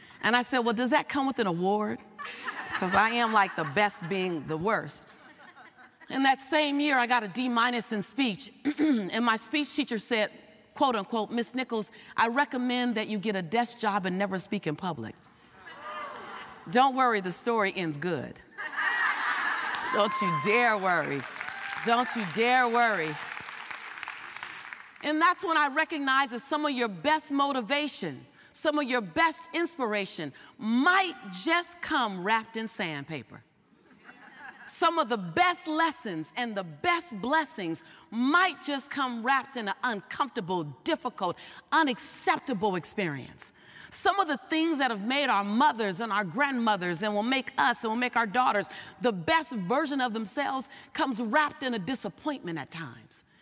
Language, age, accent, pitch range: English, 40-59, American, 210-285 Hz